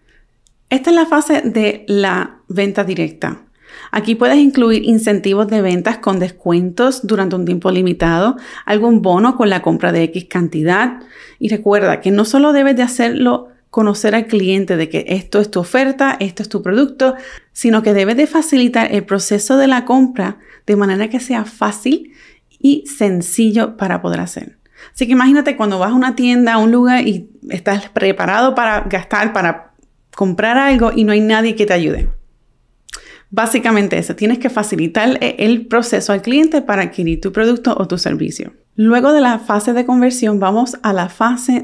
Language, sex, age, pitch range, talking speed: Spanish, female, 30-49, 195-250 Hz, 175 wpm